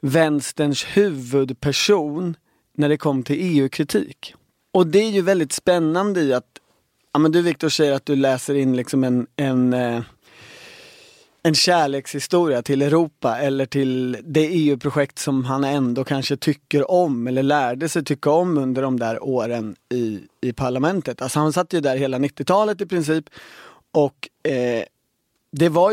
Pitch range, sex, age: 130-170 Hz, male, 30-49